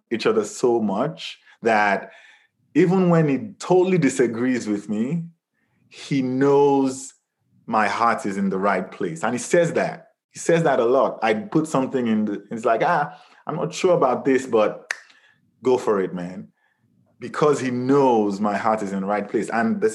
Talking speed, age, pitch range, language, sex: 180 wpm, 20-39, 105-155 Hz, English, male